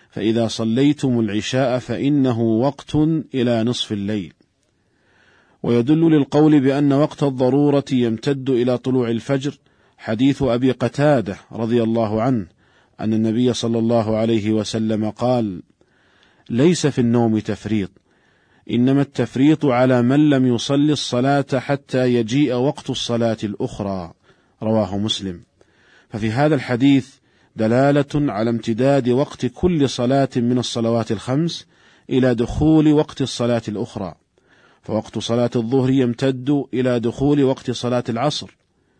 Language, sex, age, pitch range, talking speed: Arabic, male, 40-59, 115-135 Hz, 115 wpm